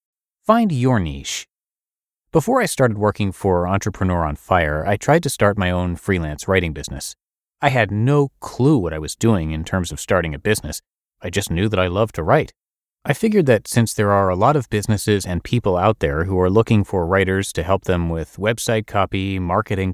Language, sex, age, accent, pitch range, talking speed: English, male, 30-49, American, 90-115 Hz, 205 wpm